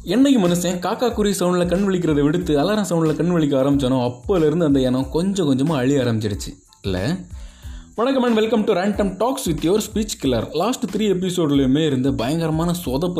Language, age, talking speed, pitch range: Tamil, 20-39, 165 wpm, 130-190 Hz